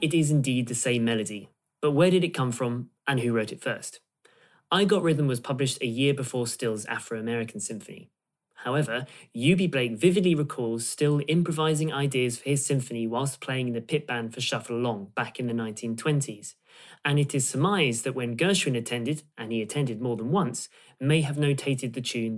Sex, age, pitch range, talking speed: male, 30-49, 120-160 Hz, 190 wpm